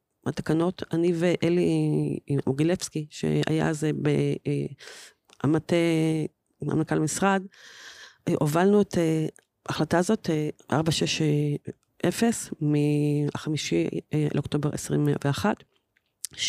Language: Hebrew